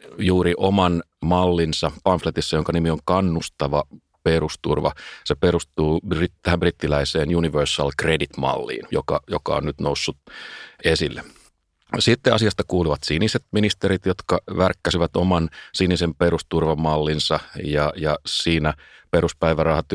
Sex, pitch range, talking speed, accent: male, 75-90 Hz, 105 wpm, native